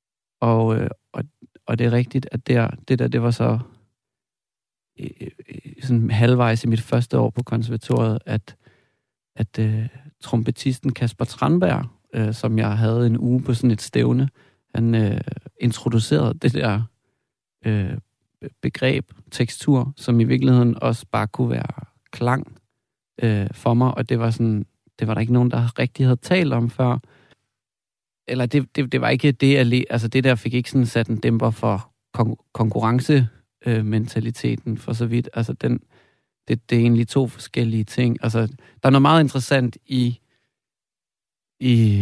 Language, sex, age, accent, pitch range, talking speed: Danish, male, 40-59, native, 110-130 Hz, 145 wpm